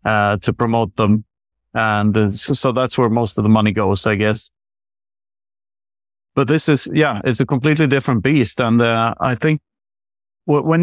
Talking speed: 170 wpm